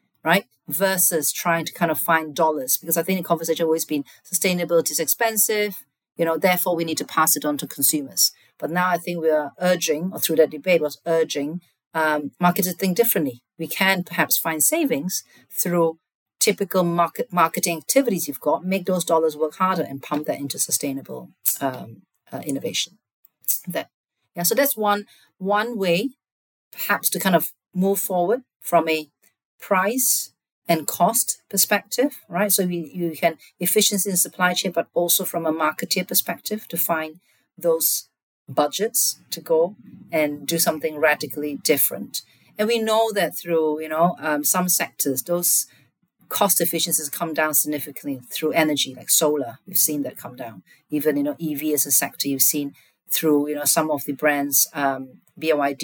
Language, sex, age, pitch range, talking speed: English, female, 40-59, 150-185 Hz, 170 wpm